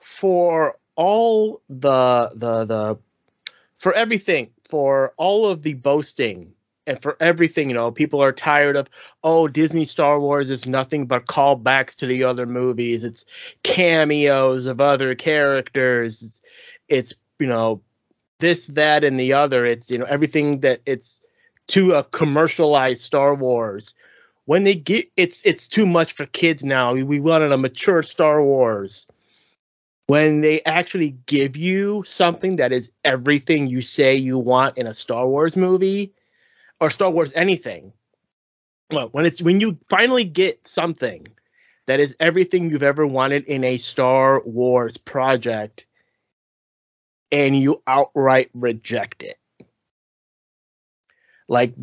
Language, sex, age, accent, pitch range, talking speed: English, male, 30-49, American, 130-170 Hz, 140 wpm